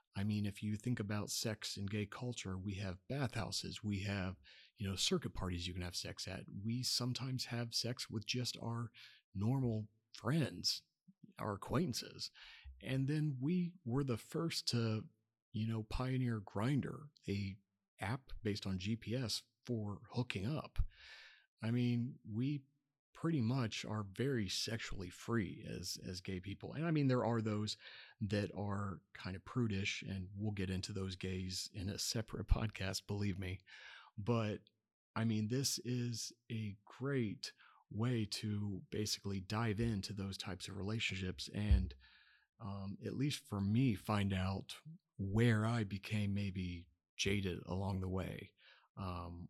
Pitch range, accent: 95-120 Hz, American